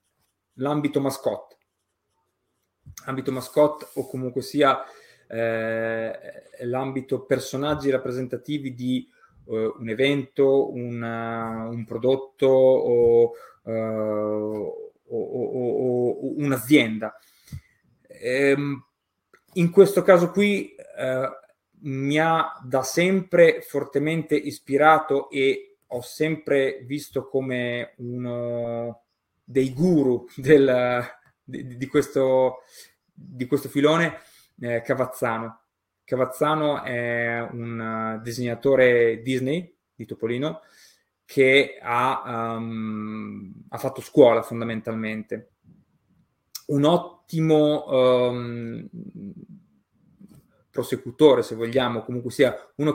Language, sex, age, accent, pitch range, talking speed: Italian, male, 30-49, native, 120-150 Hz, 85 wpm